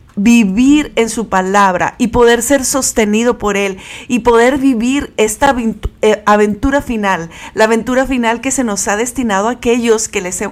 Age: 40-59